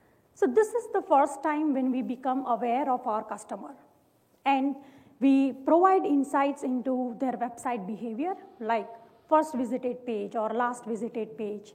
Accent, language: Indian, English